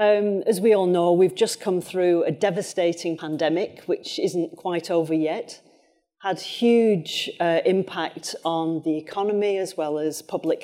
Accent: British